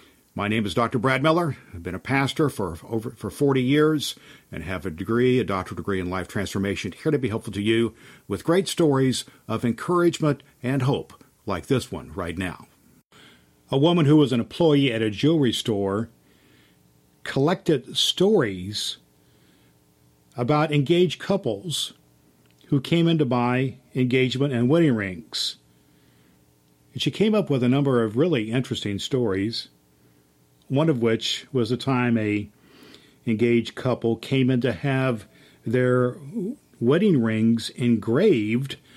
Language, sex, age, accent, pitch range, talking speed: English, male, 50-69, American, 95-140 Hz, 145 wpm